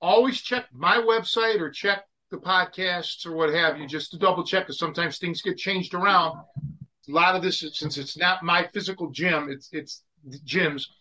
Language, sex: English, male